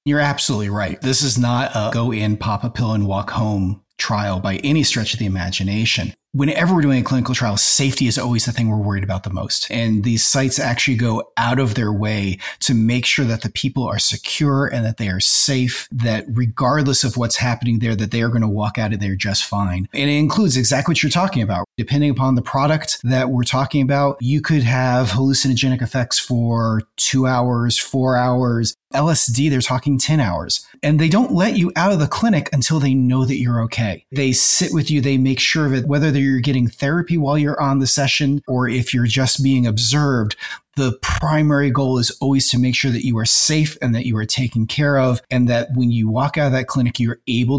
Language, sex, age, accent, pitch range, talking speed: English, male, 30-49, American, 115-140 Hz, 225 wpm